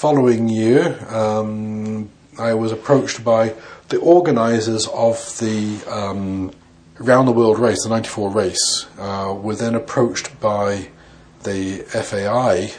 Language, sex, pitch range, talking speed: English, male, 95-115 Hz, 115 wpm